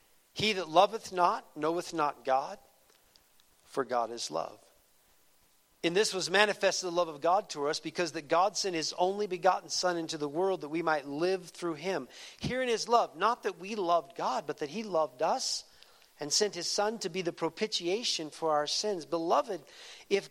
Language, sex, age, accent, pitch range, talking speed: English, male, 50-69, American, 165-215 Hz, 190 wpm